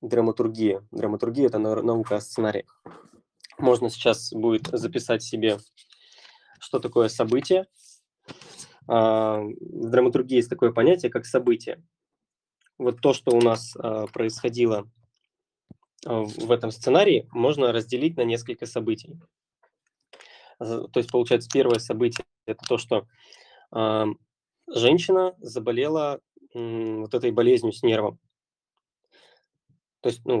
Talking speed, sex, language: 105 wpm, male, Russian